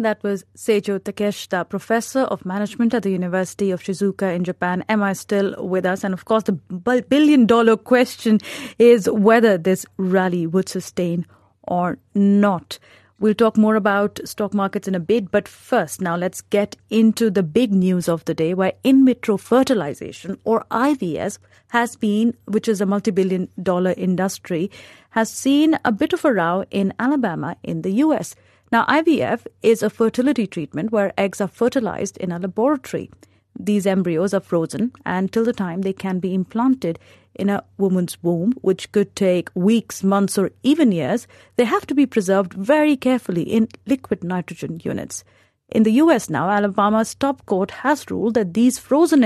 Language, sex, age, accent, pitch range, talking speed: English, female, 30-49, Indian, 190-235 Hz, 170 wpm